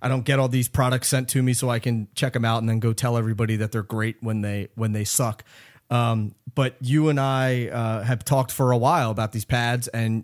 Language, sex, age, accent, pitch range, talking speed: English, male, 30-49, American, 115-135 Hz, 250 wpm